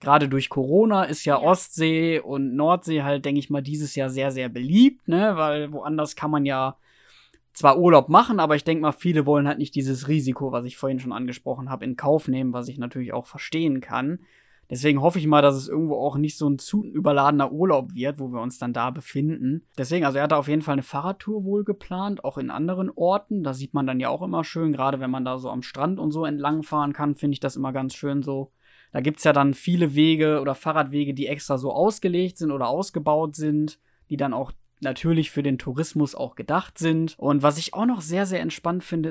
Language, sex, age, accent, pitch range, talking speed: German, male, 20-39, German, 140-165 Hz, 230 wpm